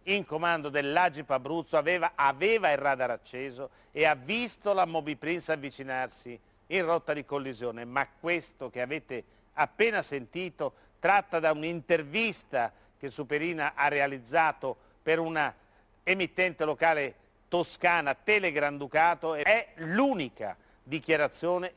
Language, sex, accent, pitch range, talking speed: Italian, male, native, 135-170 Hz, 115 wpm